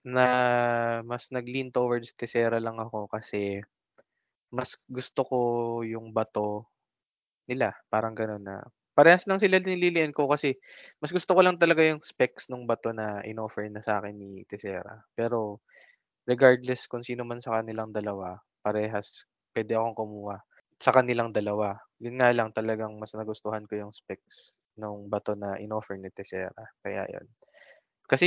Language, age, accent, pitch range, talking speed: Filipino, 20-39, native, 105-125 Hz, 150 wpm